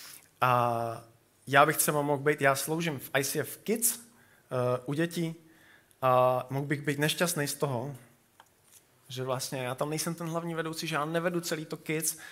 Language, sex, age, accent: Czech, male, 20-39, native